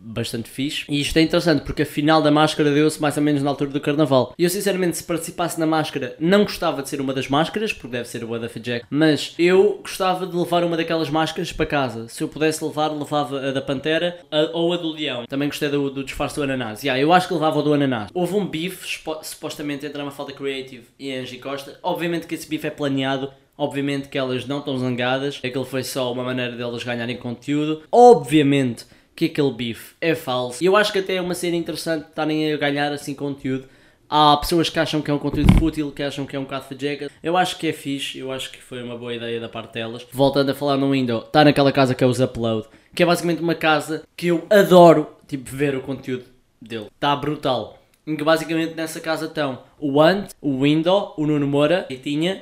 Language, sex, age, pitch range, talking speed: Portuguese, male, 20-39, 135-160 Hz, 235 wpm